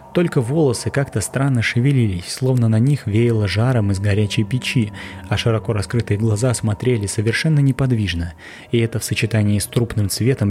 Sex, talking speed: male, 155 wpm